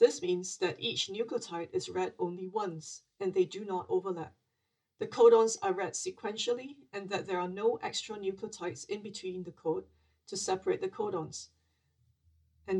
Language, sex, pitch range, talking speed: English, female, 155-205 Hz, 165 wpm